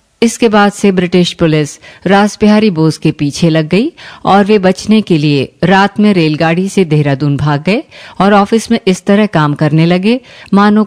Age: 50-69